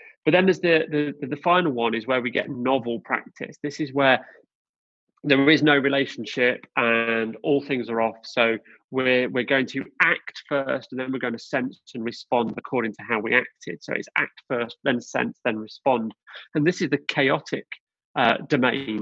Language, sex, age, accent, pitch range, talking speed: English, male, 30-49, British, 115-150 Hz, 190 wpm